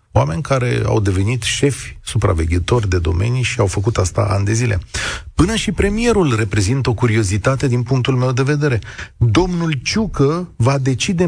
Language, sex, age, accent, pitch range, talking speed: Romanian, male, 40-59, native, 105-155 Hz, 160 wpm